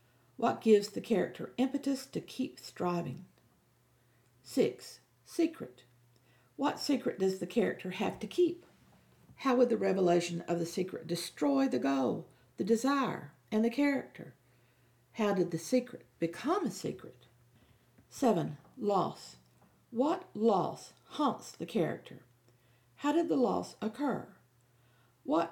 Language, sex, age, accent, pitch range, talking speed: English, female, 50-69, American, 160-240 Hz, 125 wpm